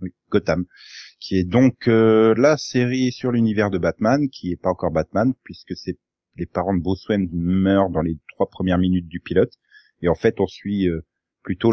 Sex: male